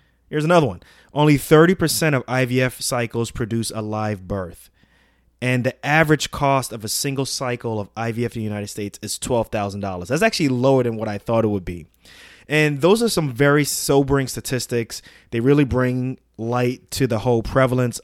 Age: 20-39